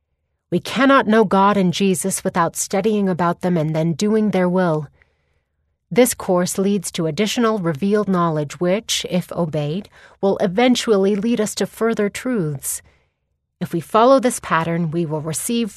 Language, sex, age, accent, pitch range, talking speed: English, female, 30-49, American, 155-210 Hz, 150 wpm